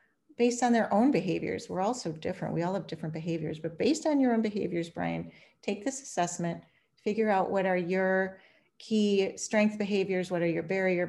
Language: English